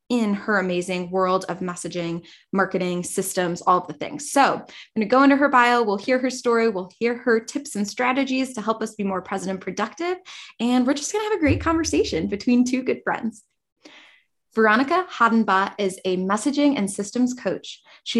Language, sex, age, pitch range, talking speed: English, female, 20-39, 200-255 Hz, 200 wpm